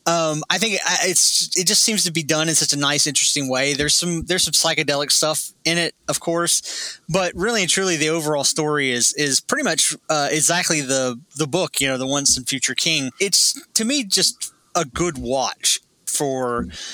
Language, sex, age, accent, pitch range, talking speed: English, male, 20-39, American, 135-170 Hz, 200 wpm